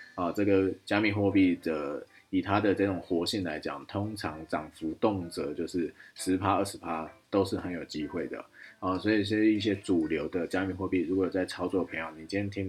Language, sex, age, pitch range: Chinese, male, 20-39, 85-100 Hz